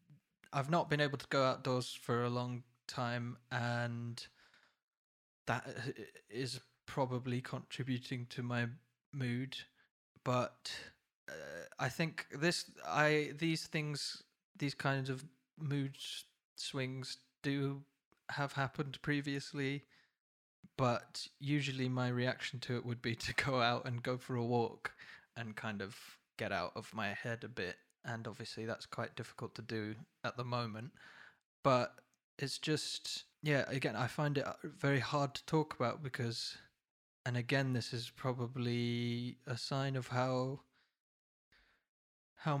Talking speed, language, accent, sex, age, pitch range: 135 wpm, English, British, male, 20-39, 120-145 Hz